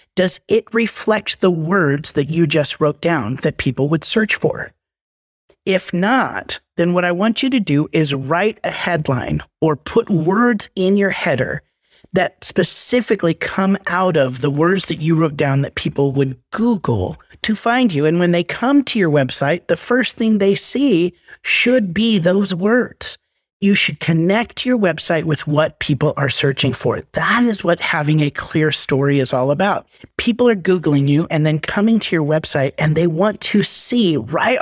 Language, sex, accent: English, male, American